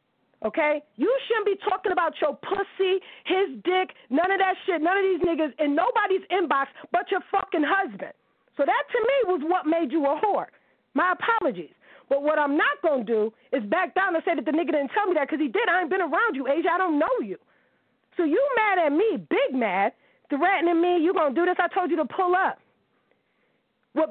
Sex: female